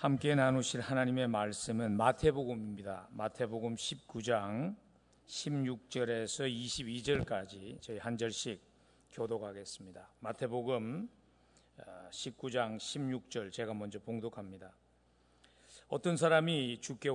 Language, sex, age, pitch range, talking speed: English, male, 40-59, 110-135 Hz, 75 wpm